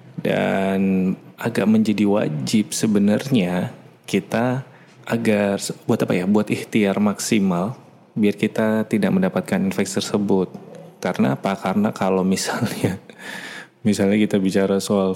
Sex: male